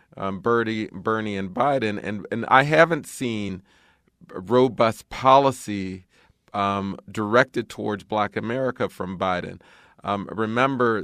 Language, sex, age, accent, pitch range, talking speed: English, male, 40-59, American, 100-120 Hz, 115 wpm